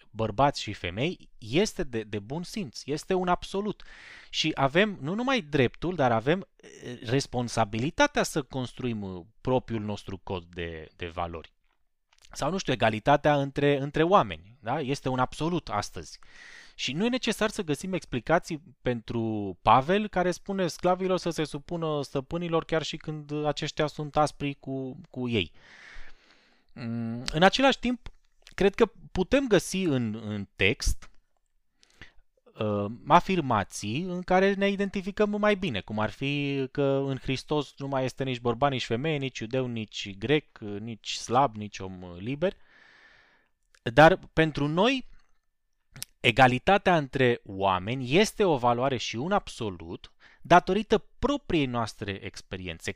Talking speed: 140 wpm